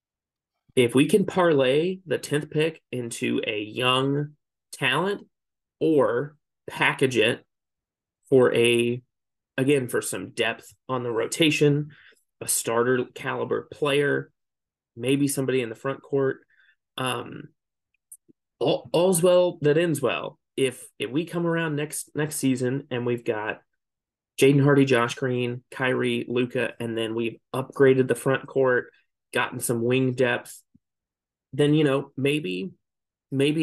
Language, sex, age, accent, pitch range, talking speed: English, male, 30-49, American, 120-145 Hz, 130 wpm